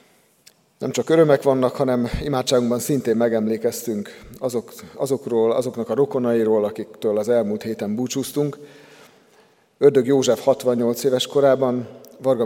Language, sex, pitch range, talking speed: Hungarian, male, 105-130 Hz, 110 wpm